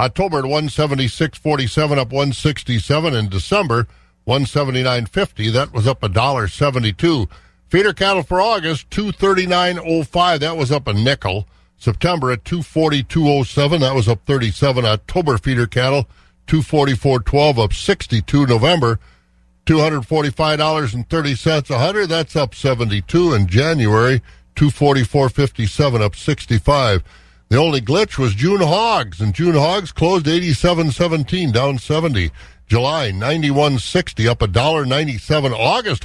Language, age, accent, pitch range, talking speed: English, 50-69, American, 115-160 Hz, 115 wpm